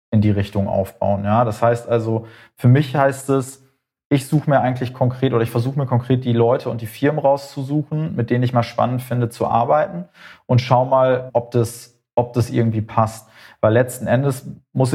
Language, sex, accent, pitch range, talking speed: German, male, German, 115-130 Hz, 195 wpm